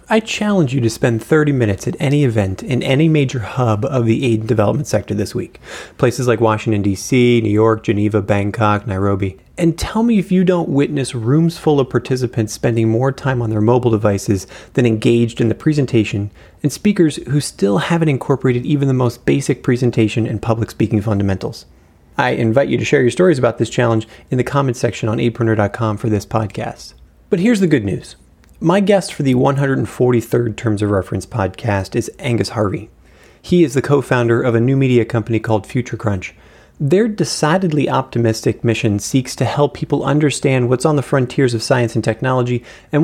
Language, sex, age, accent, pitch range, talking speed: English, male, 30-49, American, 110-140 Hz, 190 wpm